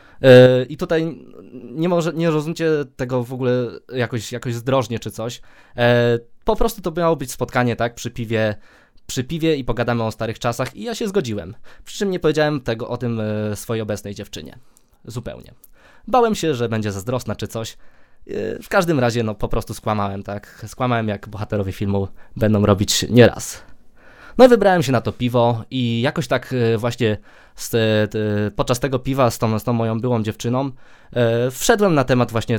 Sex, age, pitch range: male, 20-39, 115-140 Hz